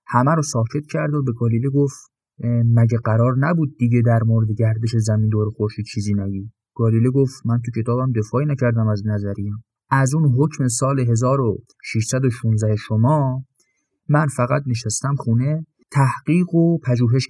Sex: male